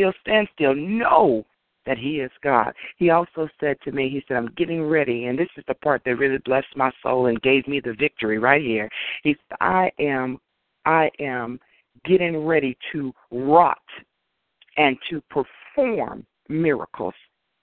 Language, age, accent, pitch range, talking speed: English, 50-69, American, 130-180 Hz, 160 wpm